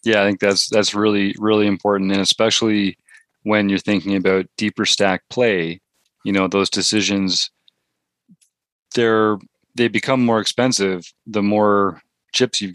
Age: 30-49